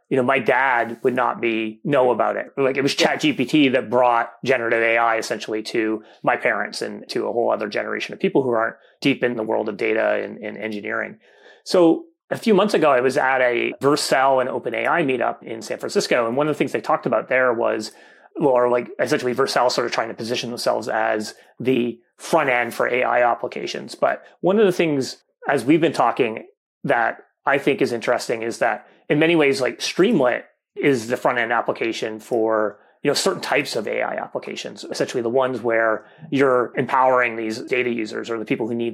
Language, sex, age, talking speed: English, male, 30-49, 205 wpm